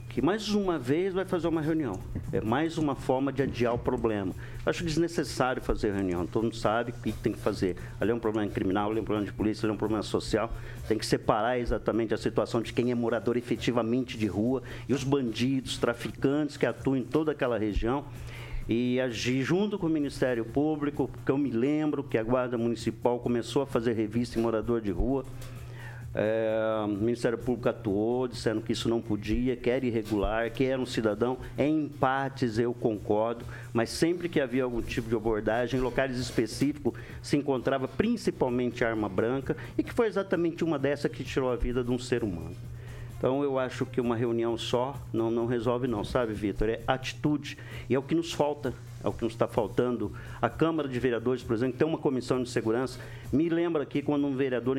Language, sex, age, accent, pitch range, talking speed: Portuguese, male, 50-69, Brazilian, 115-140 Hz, 205 wpm